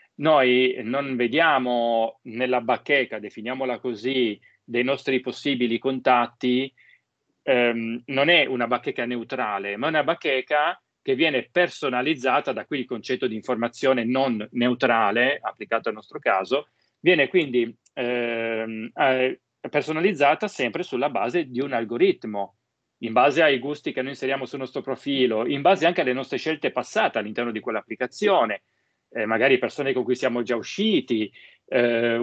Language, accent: Italian, native